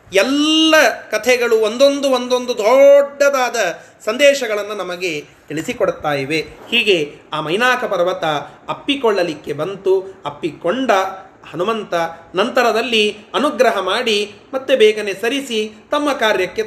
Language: Kannada